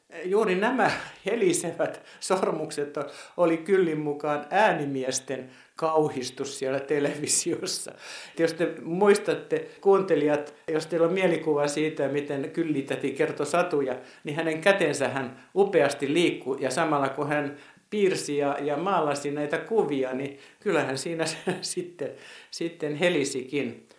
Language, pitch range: Finnish, 145-185 Hz